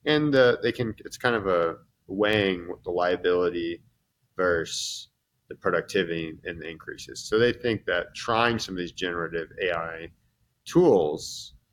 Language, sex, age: English, male, 30-49